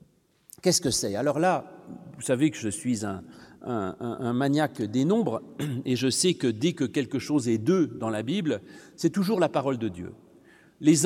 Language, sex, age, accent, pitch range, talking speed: French, male, 40-59, French, 140-190 Hz, 195 wpm